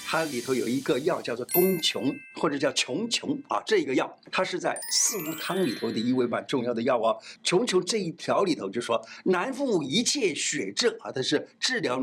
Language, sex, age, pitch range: Chinese, male, 50-69, 160-270 Hz